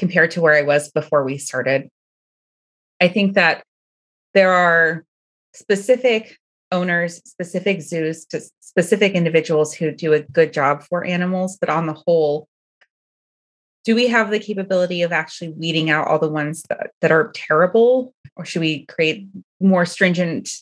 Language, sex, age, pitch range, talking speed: English, female, 30-49, 155-190 Hz, 155 wpm